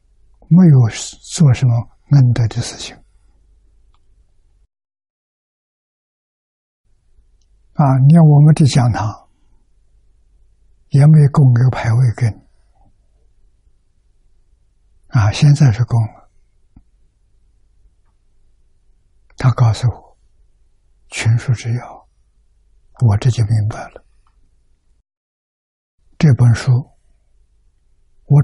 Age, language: 60-79, Chinese